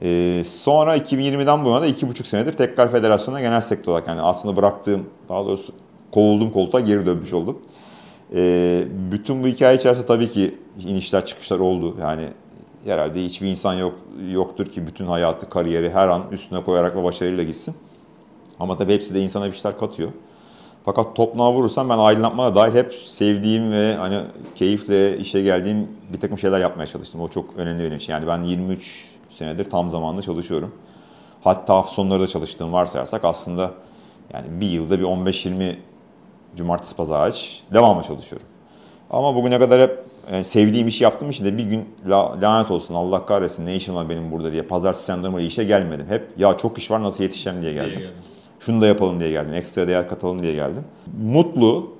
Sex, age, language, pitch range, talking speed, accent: male, 40-59, Turkish, 90-115 Hz, 170 wpm, native